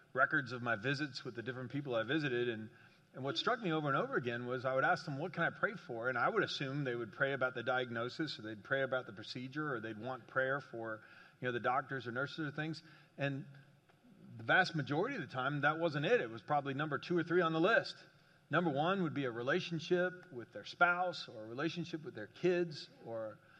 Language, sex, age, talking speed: English, male, 40-59, 240 wpm